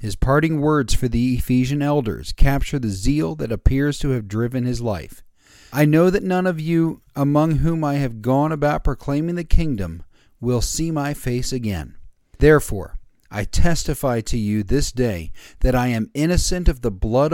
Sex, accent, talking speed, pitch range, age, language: male, American, 175 wpm, 100-145 Hz, 40-59, English